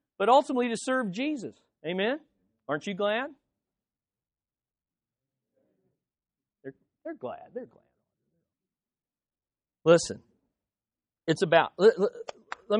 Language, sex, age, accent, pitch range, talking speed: English, male, 50-69, American, 170-225 Hz, 95 wpm